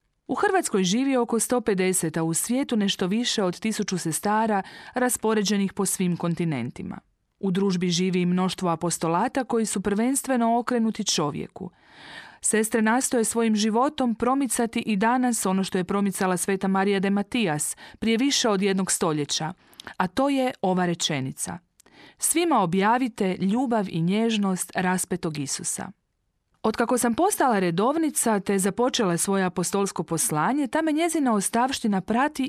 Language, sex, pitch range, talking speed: Croatian, female, 185-240 Hz, 135 wpm